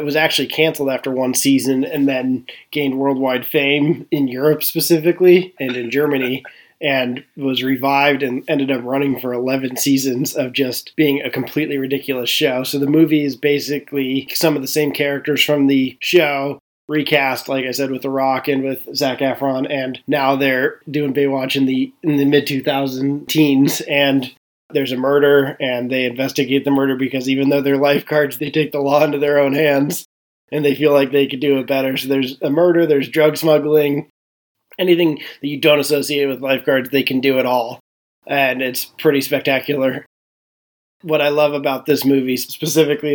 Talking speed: 180 wpm